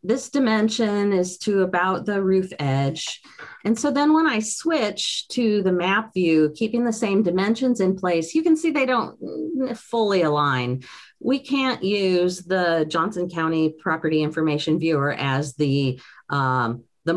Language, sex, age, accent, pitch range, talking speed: English, female, 40-59, American, 160-220 Hz, 155 wpm